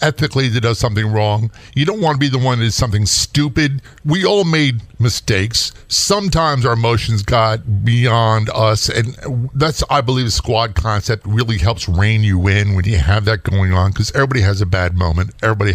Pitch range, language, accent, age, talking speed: 105-135 Hz, English, American, 50-69, 195 wpm